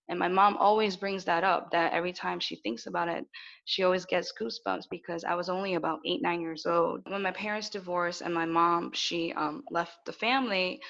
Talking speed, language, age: 215 wpm, English, 10-29